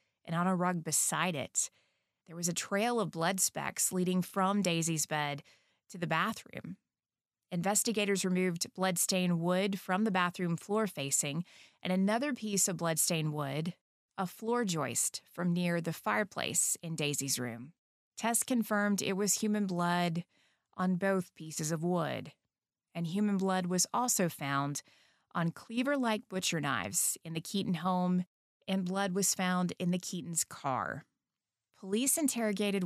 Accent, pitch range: American, 170-210 Hz